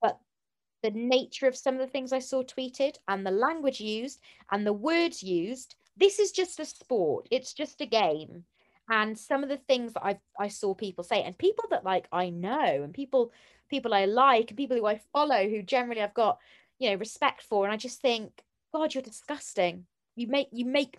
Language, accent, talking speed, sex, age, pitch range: English, British, 210 wpm, female, 20-39, 180-255 Hz